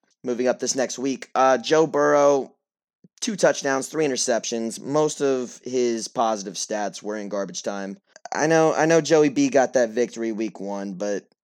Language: English